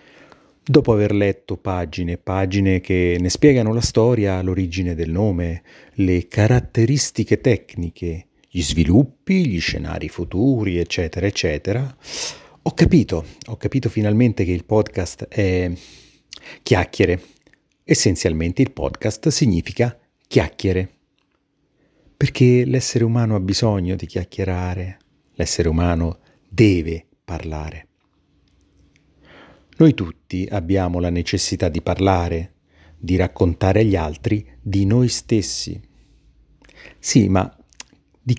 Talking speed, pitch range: 105 wpm, 85-115 Hz